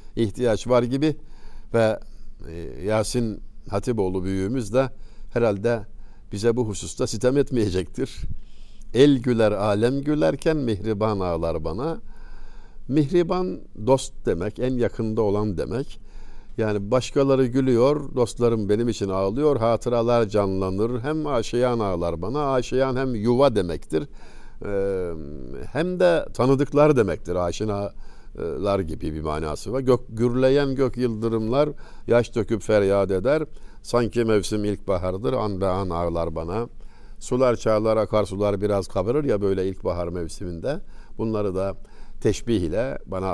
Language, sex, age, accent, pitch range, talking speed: Turkish, male, 60-79, native, 100-125 Hz, 115 wpm